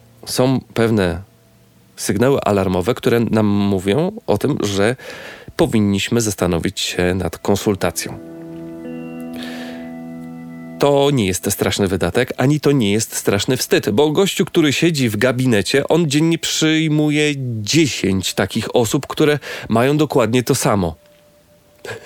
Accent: native